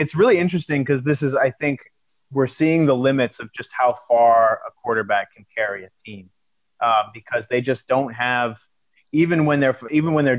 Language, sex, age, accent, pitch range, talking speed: English, male, 30-49, American, 110-130 Hz, 195 wpm